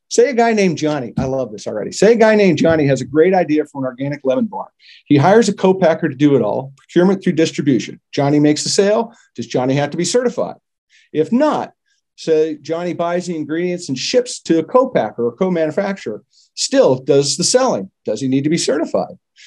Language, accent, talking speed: English, American, 210 wpm